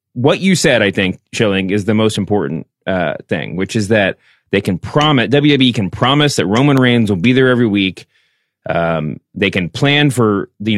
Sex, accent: male, American